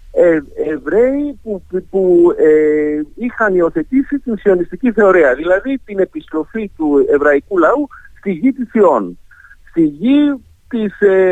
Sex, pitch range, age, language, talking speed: male, 145-235 Hz, 50-69, Greek, 135 wpm